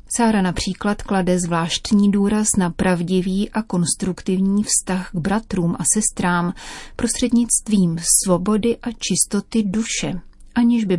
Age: 30-49